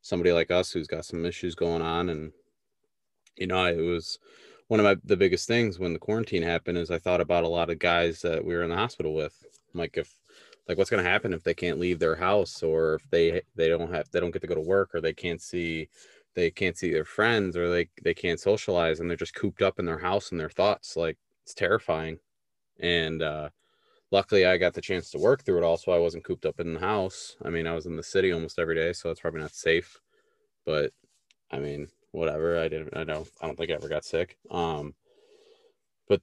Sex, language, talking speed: male, English, 240 wpm